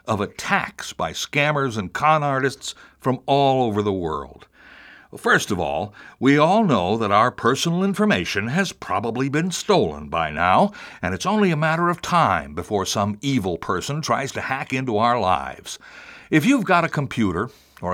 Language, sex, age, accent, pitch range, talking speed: English, male, 60-79, American, 105-170 Hz, 170 wpm